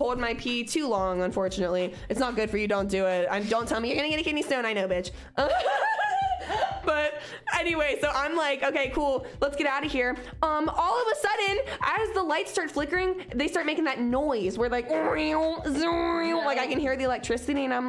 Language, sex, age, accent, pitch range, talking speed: English, female, 20-39, American, 195-290 Hz, 215 wpm